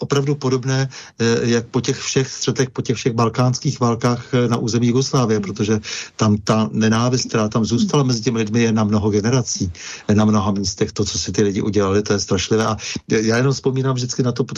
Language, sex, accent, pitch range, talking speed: Czech, male, native, 105-120 Hz, 200 wpm